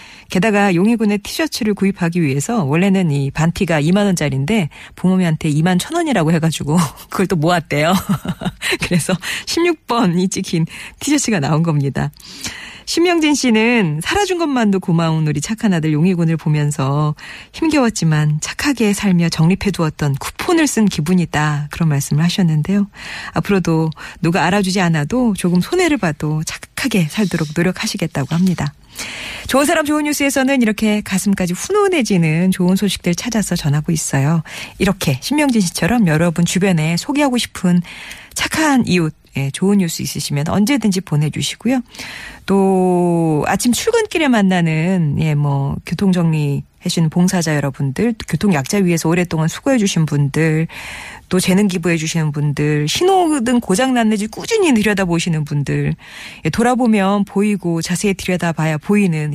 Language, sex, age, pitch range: Korean, female, 40-59, 155-215 Hz